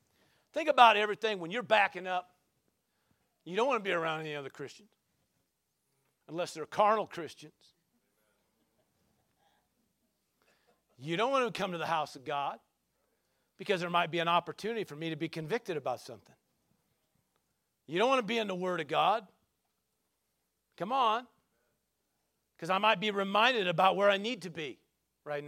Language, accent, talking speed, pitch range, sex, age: English, American, 160 wpm, 180-275 Hz, male, 50-69